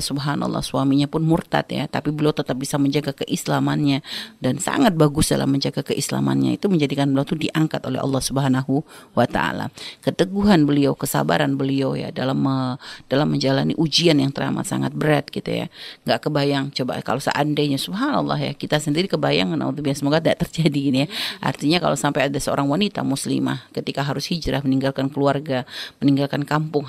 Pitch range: 140-175 Hz